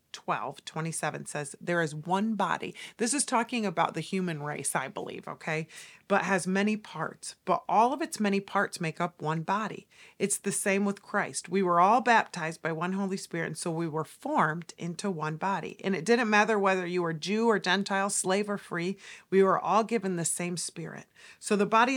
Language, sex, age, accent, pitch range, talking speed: English, female, 40-59, American, 175-235 Hz, 205 wpm